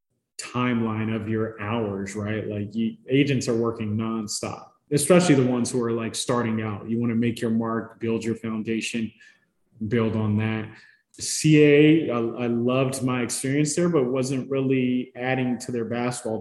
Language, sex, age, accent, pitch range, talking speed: English, male, 20-39, American, 110-120 Hz, 160 wpm